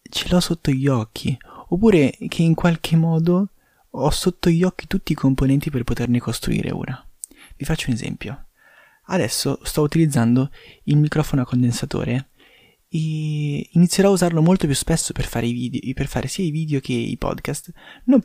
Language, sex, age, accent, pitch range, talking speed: Italian, male, 20-39, native, 125-160 Hz, 160 wpm